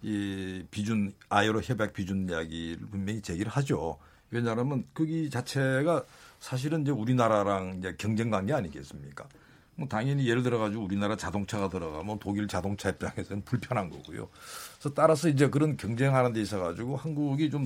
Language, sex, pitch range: Korean, male, 105-145 Hz